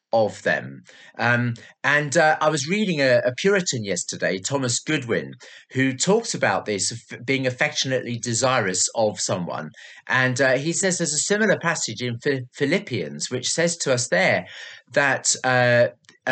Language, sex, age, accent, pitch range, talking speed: English, male, 40-59, British, 125-170 Hz, 145 wpm